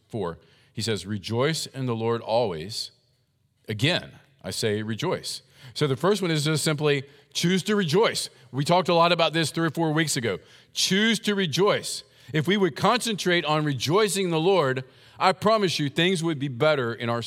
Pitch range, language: 125-160 Hz, English